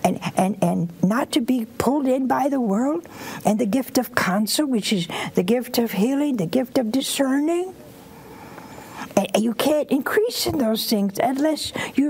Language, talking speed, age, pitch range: English, 175 wpm, 60-79, 180-270 Hz